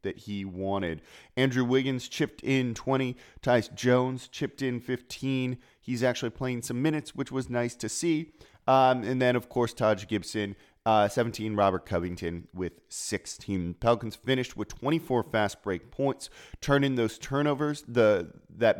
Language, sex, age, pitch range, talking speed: English, male, 30-49, 100-130 Hz, 155 wpm